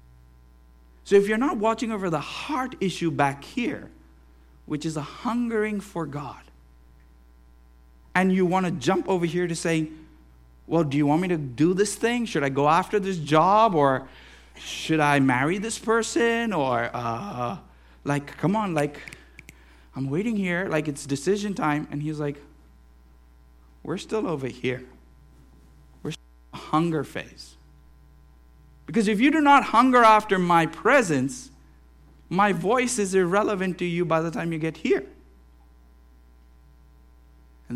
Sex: male